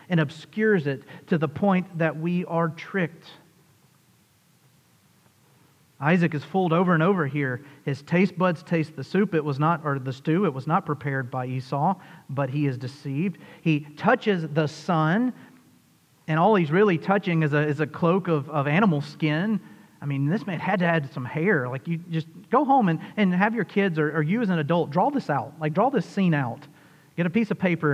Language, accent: English, American